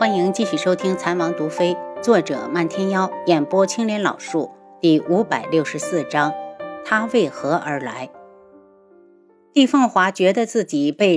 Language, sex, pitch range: Chinese, female, 160-240 Hz